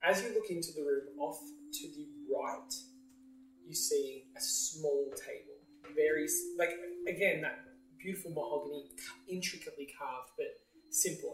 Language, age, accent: English, 20-39, Australian